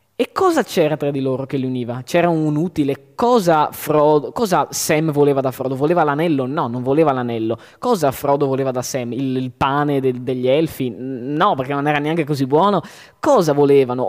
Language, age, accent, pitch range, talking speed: Italian, 20-39, native, 125-175 Hz, 195 wpm